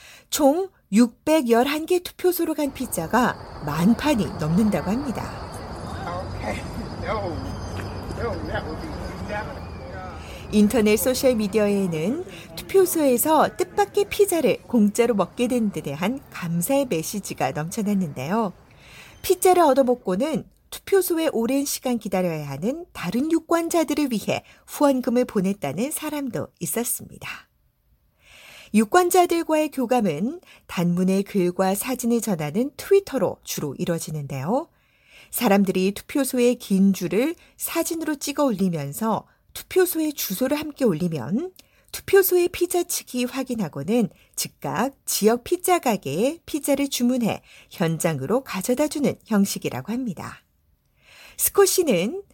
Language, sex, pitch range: Korean, female, 175-295 Hz